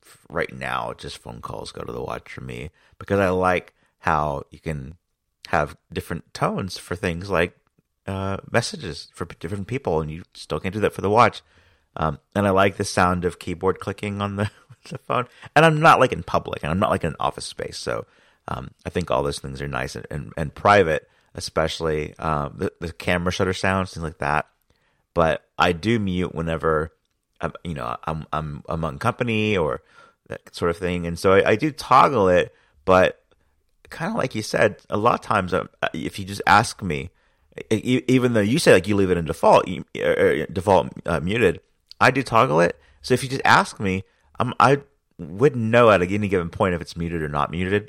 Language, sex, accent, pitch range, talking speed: English, male, American, 80-105 Hz, 205 wpm